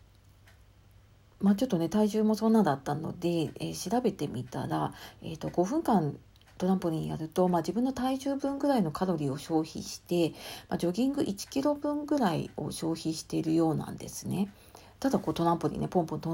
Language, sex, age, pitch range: Japanese, female, 40-59, 145-205 Hz